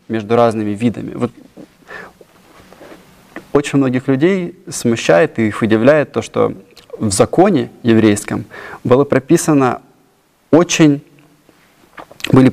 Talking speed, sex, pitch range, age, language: 75 wpm, male, 110-140 Hz, 20-39, Russian